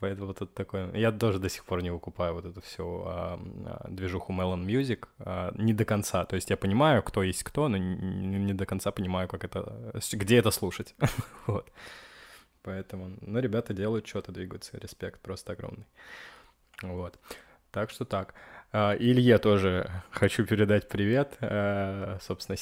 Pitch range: 95-120 Hz